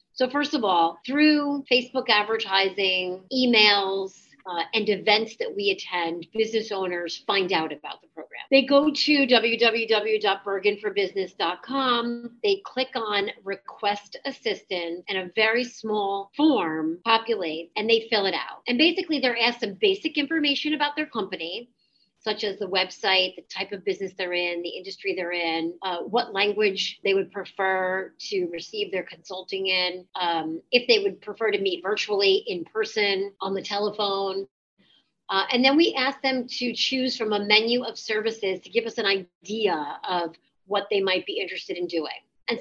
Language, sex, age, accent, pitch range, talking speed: English, female, 40-59, American, 190-250 Hz, 165 wpm